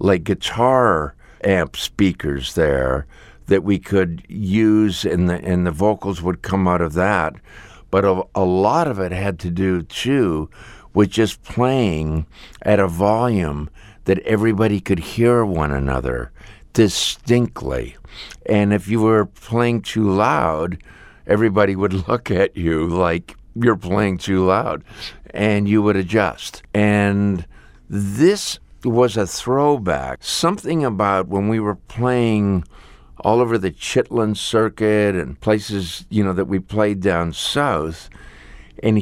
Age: 50-69